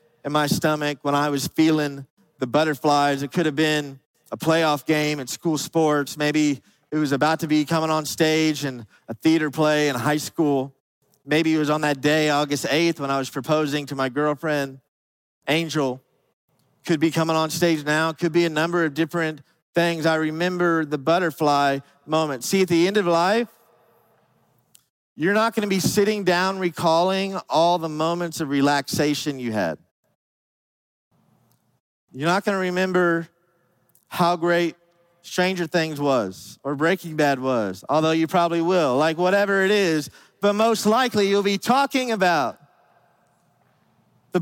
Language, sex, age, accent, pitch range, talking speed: English, male, 40-59, American, 150-185 Hz, 160 wpm